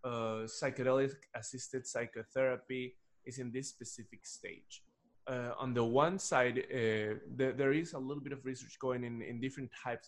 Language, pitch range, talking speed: English, 115-135 Hz, 155 wpm